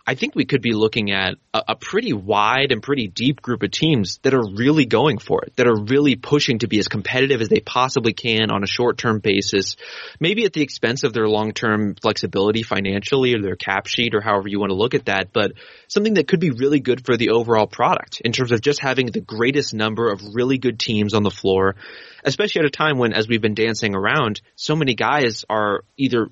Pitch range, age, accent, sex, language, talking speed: 105-135 Hz, 20-39, American, male, English, 230 wpm